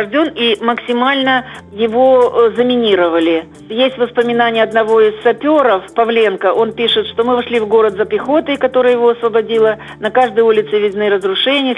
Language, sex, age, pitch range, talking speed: Russian, female, 50-69, 205-245 Hz, 140 wpm